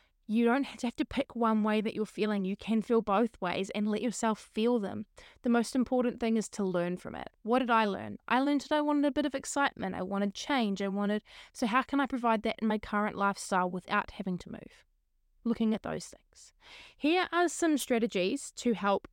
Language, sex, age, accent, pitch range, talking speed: English, female, 20-39, Australian, 200-240 Hz, 225 wpm